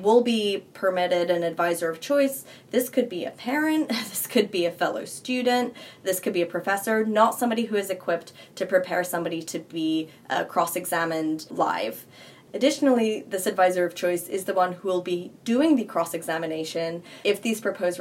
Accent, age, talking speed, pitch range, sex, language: American, 20-39, 175 wpm, 170-215 Hz, female, English